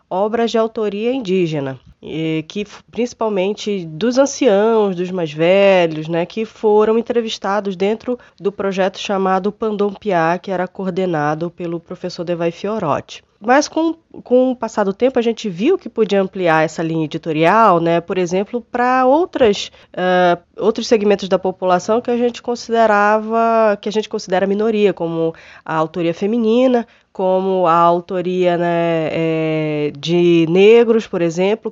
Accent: Brazilian